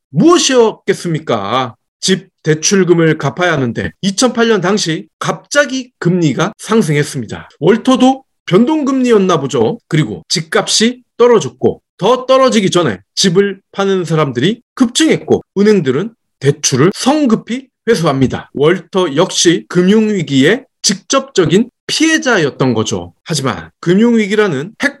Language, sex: Korean, male